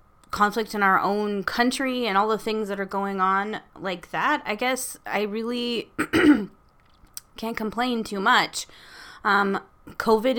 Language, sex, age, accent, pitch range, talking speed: English, female, 20-39, American, 180-225 Hz, 145 wpm